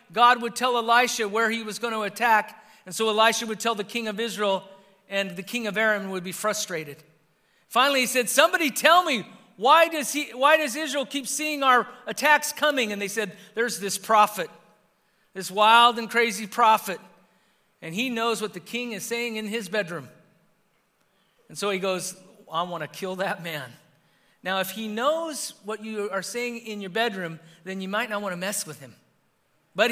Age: 40-59